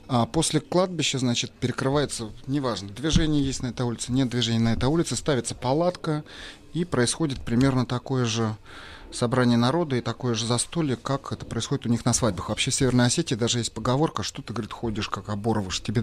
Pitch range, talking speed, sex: 110-140 Hz, 185 wpm, male